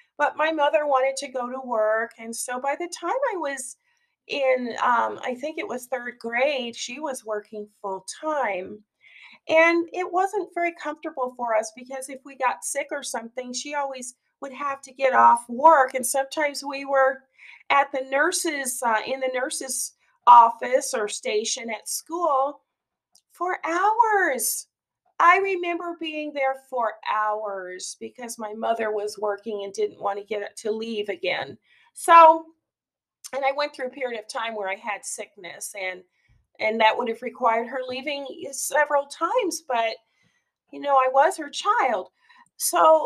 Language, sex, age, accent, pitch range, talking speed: English, female, 40-59, American, 235-325 Hz, 165 wpm